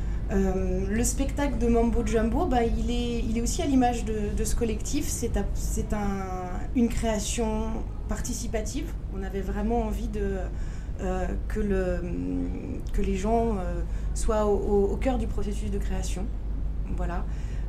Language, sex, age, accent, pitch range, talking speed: French, female, 20-39, French, 190-230 Hz, 140 wpm